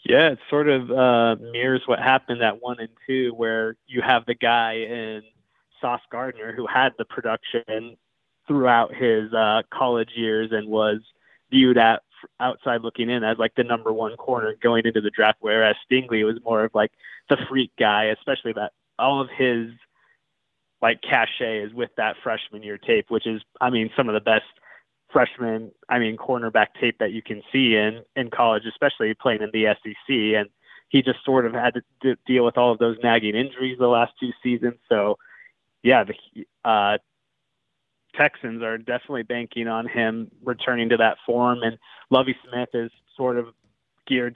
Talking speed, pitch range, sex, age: 180 wpm, 110-125 Hz, male, 20-39